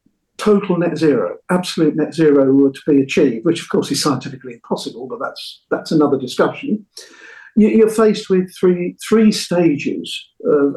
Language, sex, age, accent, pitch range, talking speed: English, male, 50-69, British, 140-195 Hz, 155 wpm